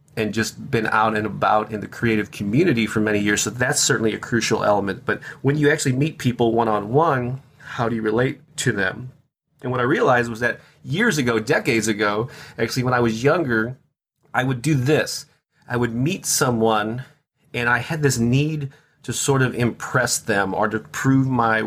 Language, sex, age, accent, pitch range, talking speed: English, male, 30-49, American, 115-140 Hz, 190 wpm